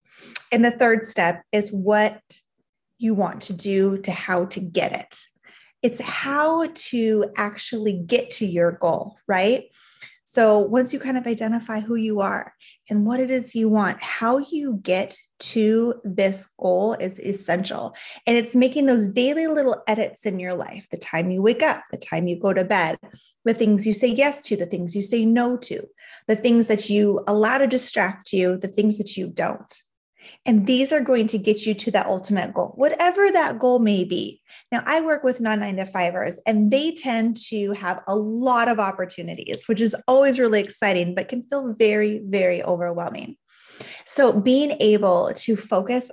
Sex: female